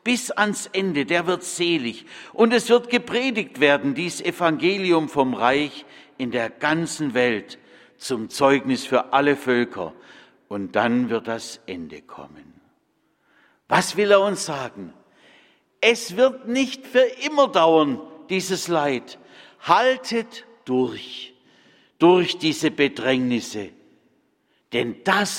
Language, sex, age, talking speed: German, male, 60-79, 120 wpm